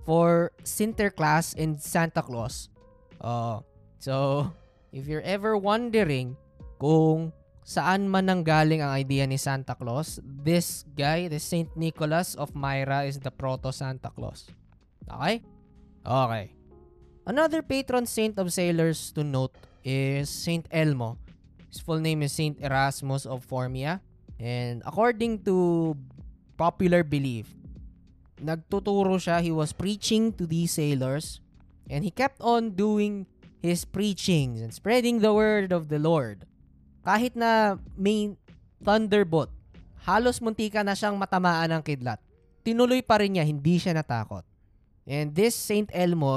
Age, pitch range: 20-39, 130-185 Hz